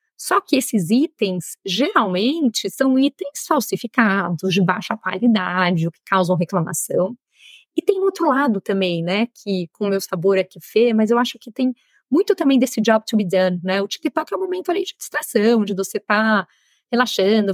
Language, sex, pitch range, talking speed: Portuguese, female, 185-230 Hz, 190 wpm